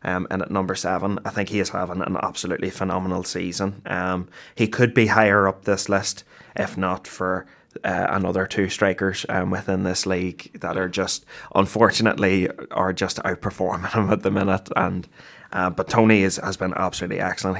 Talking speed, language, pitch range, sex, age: 180 wpm, English, 95-100 Hz, male, 20-39